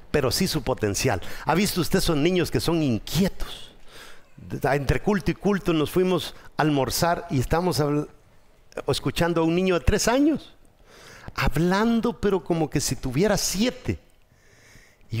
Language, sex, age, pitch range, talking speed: English, male, 50-69, 130-195 Hz, 150 wpm